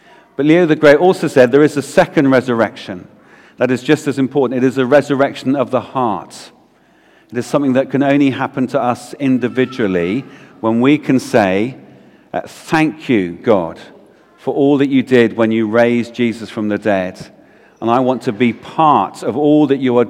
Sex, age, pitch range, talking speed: male, 50-69, 125-160 Hz, 190 wpm